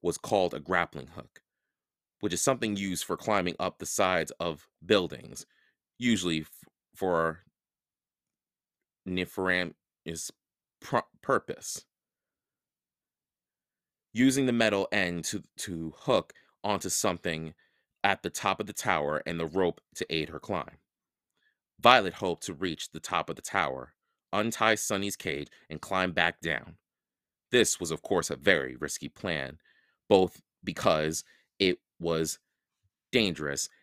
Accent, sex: American, male